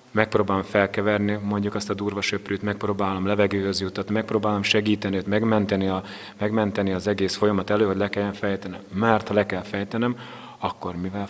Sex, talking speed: male, 155 wpm